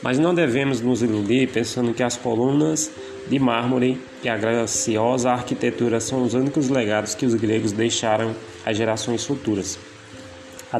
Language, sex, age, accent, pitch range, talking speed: Portuguese, male, 20-39, Brazilian, 115-130 Hz, 150 wpm